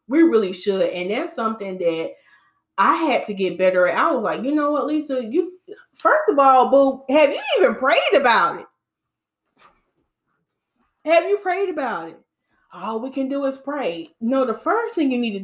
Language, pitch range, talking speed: English, 190-270 Hz, 190 wpm